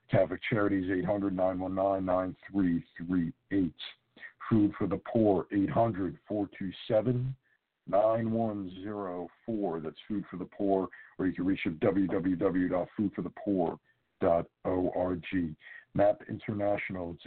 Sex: male